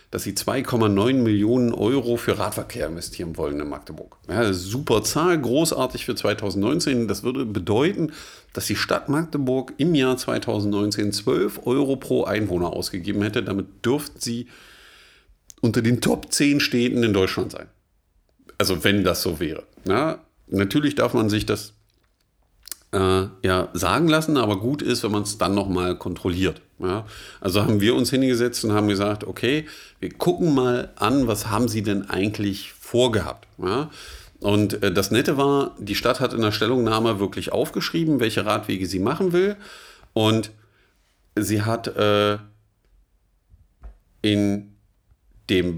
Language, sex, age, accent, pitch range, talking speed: German, male, 50-69, German, 100-120 Hz, 150 wpm